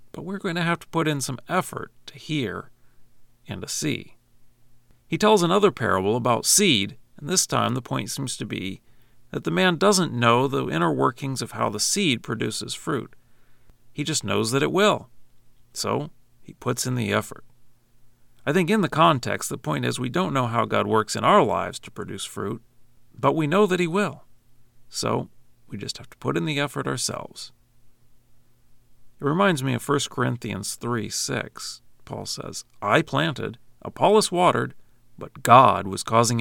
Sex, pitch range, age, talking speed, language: male, 120-140 Hz, 40-59, 180 wpm, English